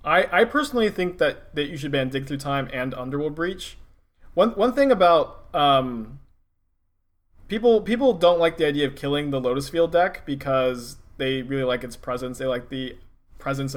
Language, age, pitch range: English, 20-39, 125-145 Hz